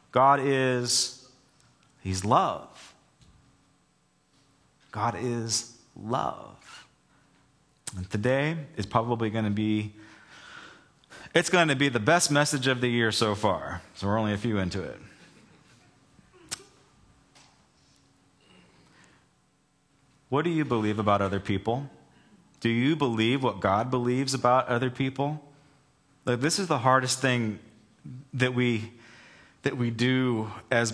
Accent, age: American, 30-49